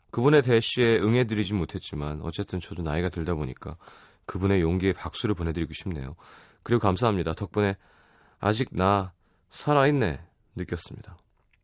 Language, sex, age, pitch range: Korean, male, 30-49, 85-115 Hz